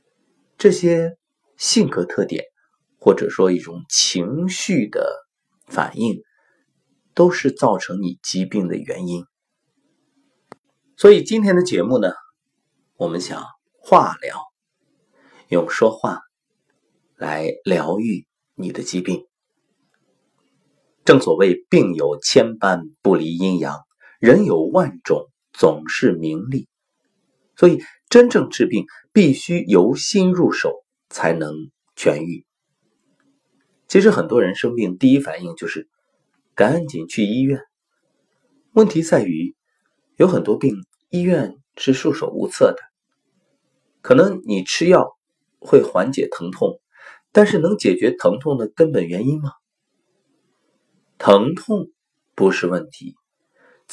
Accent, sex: native, male